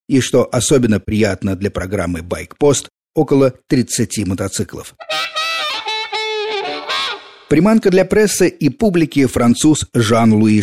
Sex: male